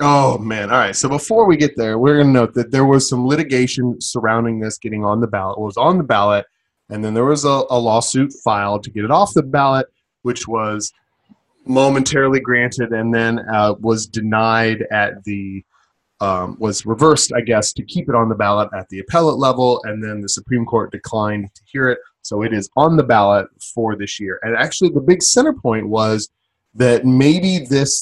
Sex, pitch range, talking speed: male, 105-135 Hz, 210 wpm